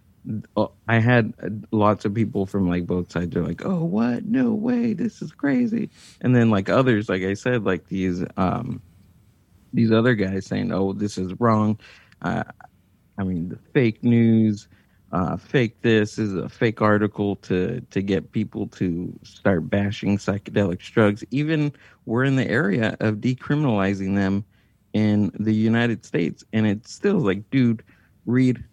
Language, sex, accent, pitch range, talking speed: English, male, American, 100-135 Hz, 160 wpm